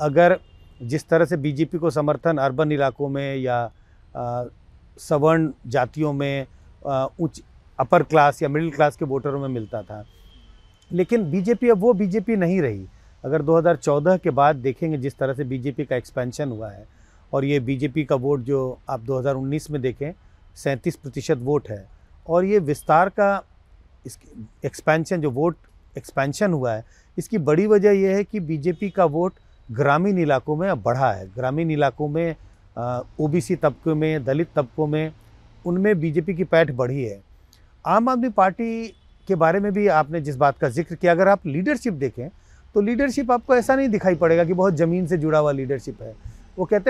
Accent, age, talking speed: native, 40-59, 175 wpm